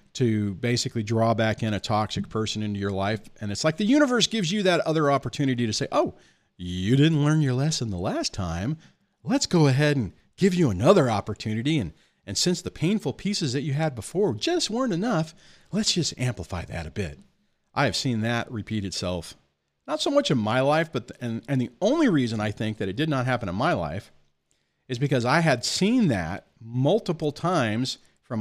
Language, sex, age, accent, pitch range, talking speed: English, male, 40-59, American, 95-140 Hz, 205 wpm